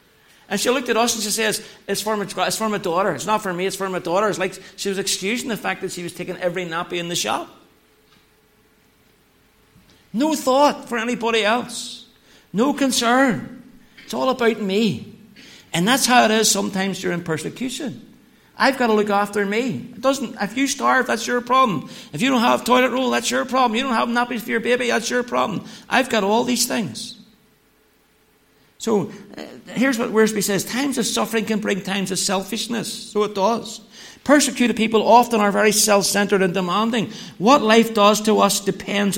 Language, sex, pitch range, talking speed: English, male, 185-235 Hz, 195 wpm